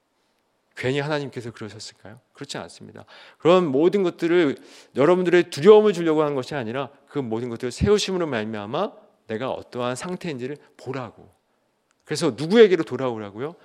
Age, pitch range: 40-59, 115-190 Hz